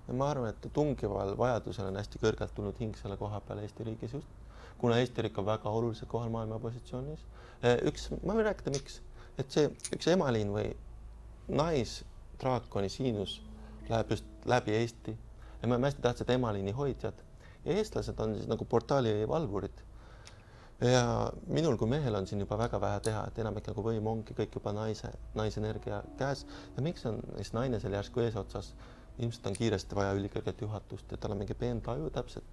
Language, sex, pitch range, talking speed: English, male, 100-120 Hz, 165 wpm